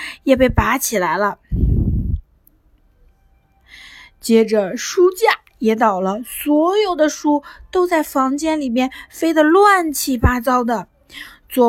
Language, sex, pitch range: Chinese, female, 225-375 Hz